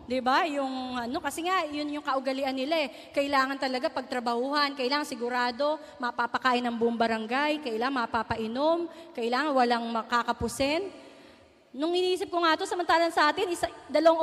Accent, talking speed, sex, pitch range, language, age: native, 140 wpm, female, 275-370 Hz, Filipino, 30-49